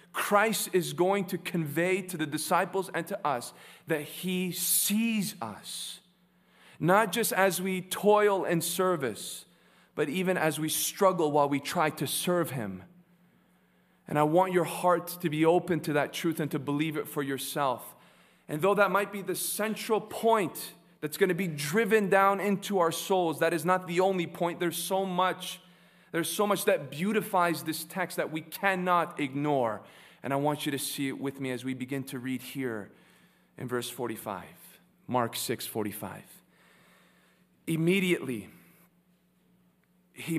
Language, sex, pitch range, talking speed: English, male, 150-185 Hz, 165 wpm